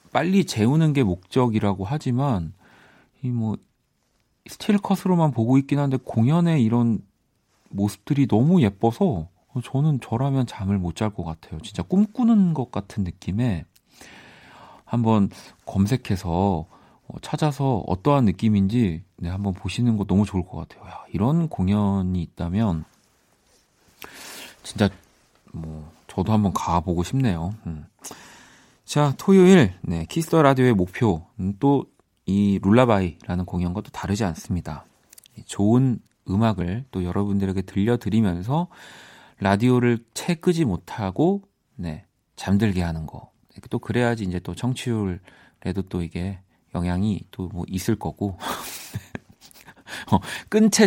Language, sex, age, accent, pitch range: Korean, male, 40-59, native, 95-125 Hz